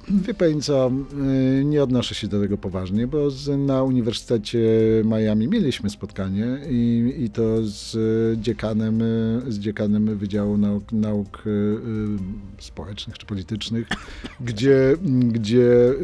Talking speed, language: 120 wpm, Polish